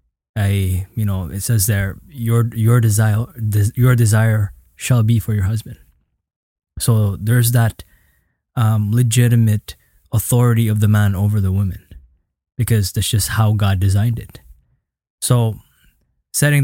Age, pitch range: 20-39, 100-120 Hz